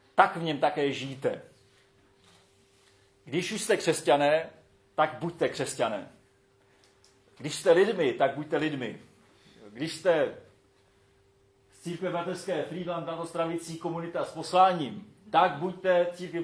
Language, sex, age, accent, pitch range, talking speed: Czech, male, 40-59, native, 120-165 Hz, 115 wpm